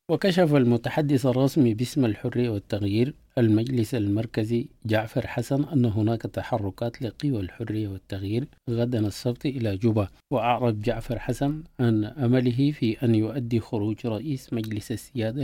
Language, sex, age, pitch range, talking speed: English, male, 50-69, 110-130 Hz, 125 wpm